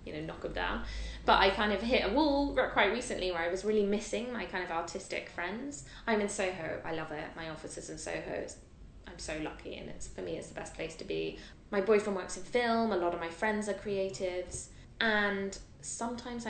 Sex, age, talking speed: female, 20-39, 225 wpm